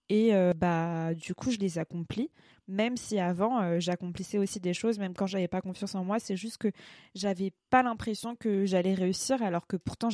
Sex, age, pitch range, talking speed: female, 20-39, 185-225 Hz, 205 wpm